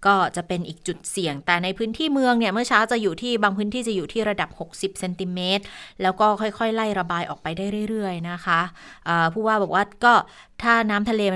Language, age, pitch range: Thai, 20-39, 175-220 Hz